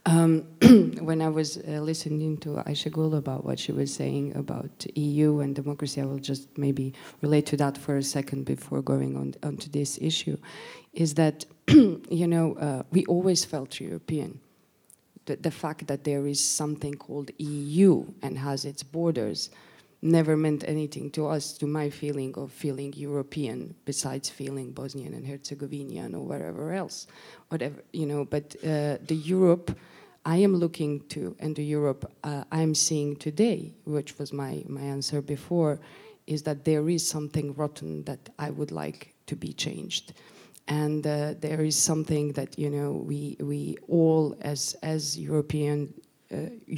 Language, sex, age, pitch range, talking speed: French, female, 20-39, 145-155 Hz, 165 wpm